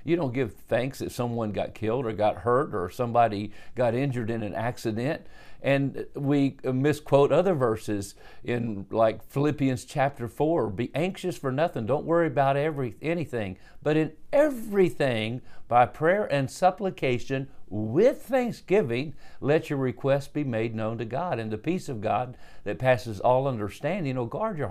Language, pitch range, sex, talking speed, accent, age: English, 120-155 Hz, male, 160 wpm, American, 50-69